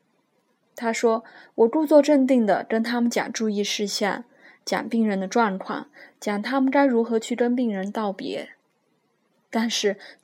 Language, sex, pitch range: Chinese, female, 205-255 Hz